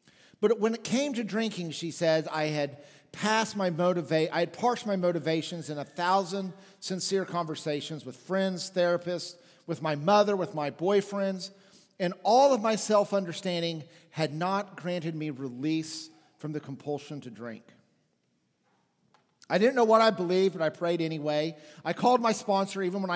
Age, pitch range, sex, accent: 40-59, 160-205 Hz, male, American